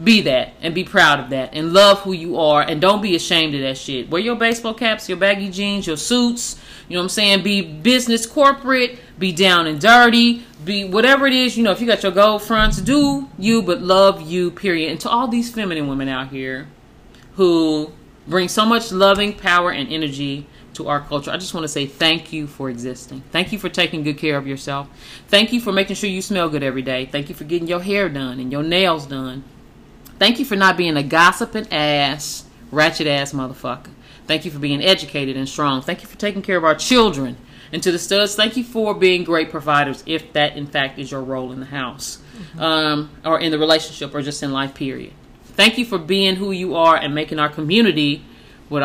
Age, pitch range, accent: 30-49, 145-200 Hz, American